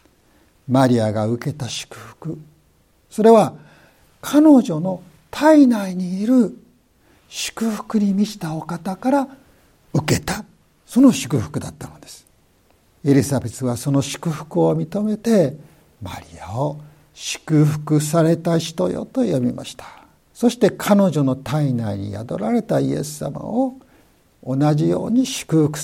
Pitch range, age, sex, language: 130-205 Hz, 60-79, male, Japanese